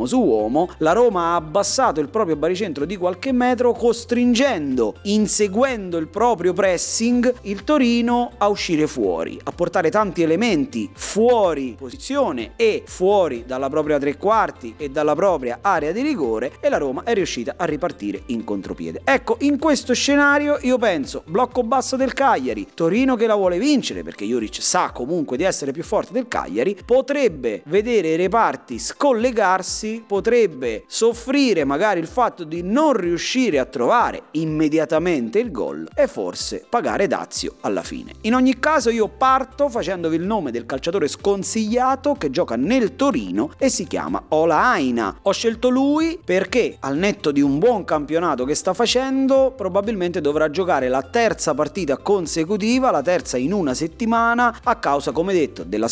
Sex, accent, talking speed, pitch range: male, native, 160 wpm, 160-255 Hz